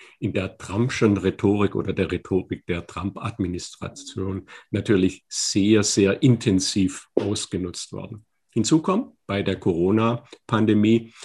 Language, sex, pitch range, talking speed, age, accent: German, male, 100-120 Hz, 105 wpm, 50-69, German